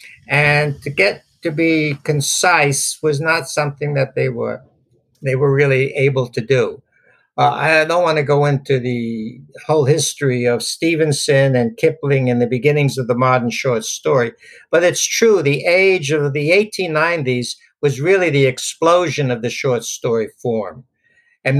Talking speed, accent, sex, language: 160 wpm, American, male, English